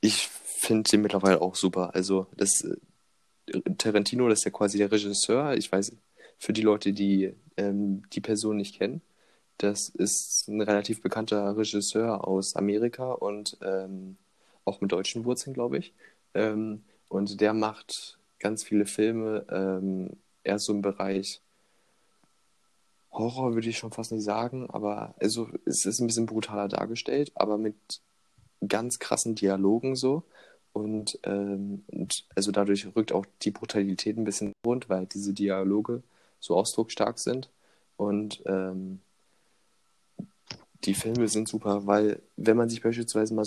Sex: male